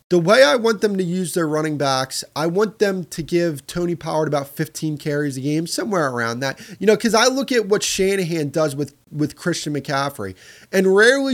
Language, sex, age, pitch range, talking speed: English, male, 20-39, 140-180 Hz, 210 wpm